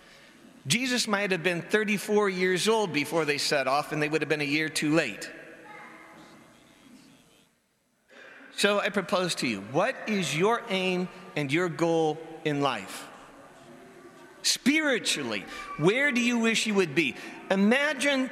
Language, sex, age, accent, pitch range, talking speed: English, male, 40-59, American, 160-220 Hz, 140 wpm